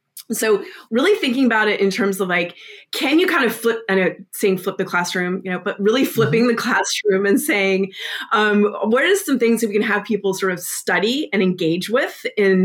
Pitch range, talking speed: 190-230 Hz, 220 wpm